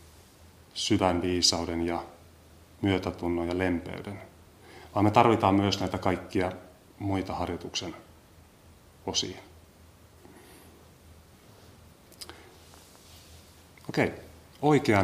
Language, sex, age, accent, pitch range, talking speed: Finnish, male, 30-49, native, 90-100 Hz, 70 wpm